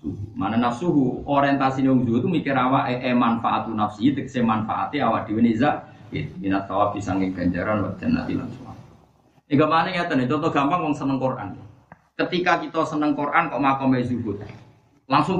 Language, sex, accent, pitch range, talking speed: Indonesian, male, native, 105-140 Hz, 150 wpm